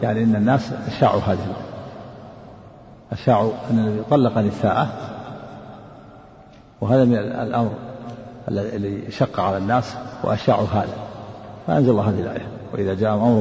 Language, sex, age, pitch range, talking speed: Arabic, male, 50-69, 110-130 Hz, 110 wpm